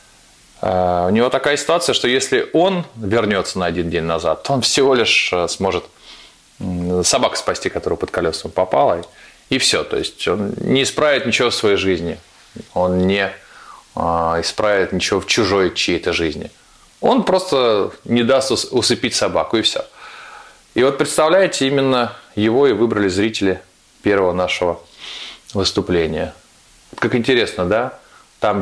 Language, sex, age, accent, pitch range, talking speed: Russian, male, 20-39, native, 90-110 Hz, 135 wpm